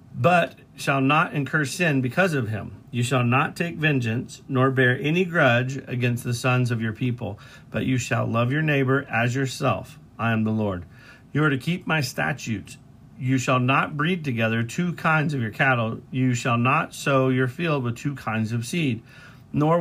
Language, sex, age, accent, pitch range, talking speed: English, male, 40-59, American, 120-145 Hz, 190 wpm